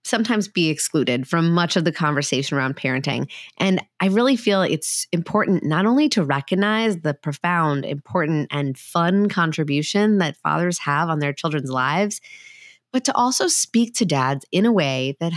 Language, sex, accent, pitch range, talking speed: English, female, American, 150-190 Hz, 170 wpm